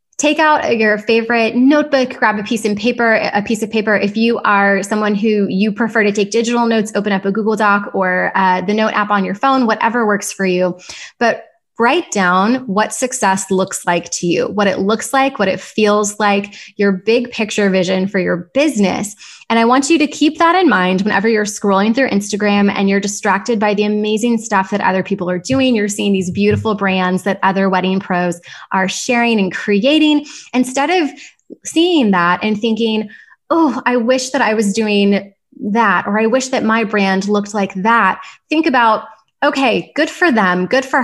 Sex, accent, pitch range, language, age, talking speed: female, American, 195-235 Hz, English, 20-39, 200 wpm